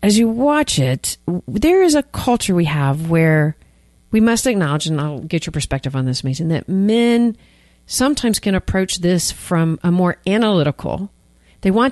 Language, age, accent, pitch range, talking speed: English, 40-59, American, 145-195 Hz, 170 wpm